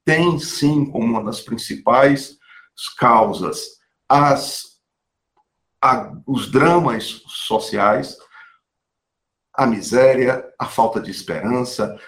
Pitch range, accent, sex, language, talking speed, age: 115-175 Hz, Brazilian, male, Portuguese, 90 wpm, 50-69